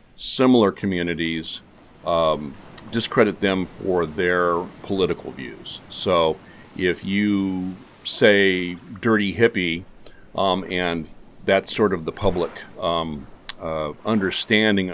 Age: 50-69